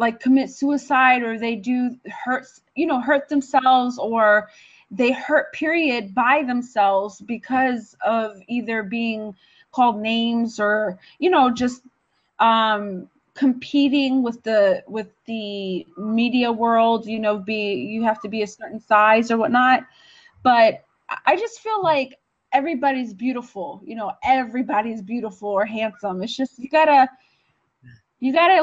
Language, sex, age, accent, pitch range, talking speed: English, female, 20-39, American, 225-300 Hz, 140 wpm